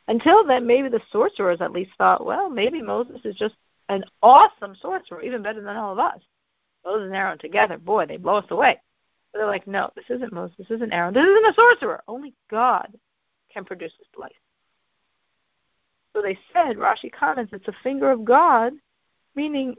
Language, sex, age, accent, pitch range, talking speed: English, female, 50-69, American, 205-270 Hz, 190 wpm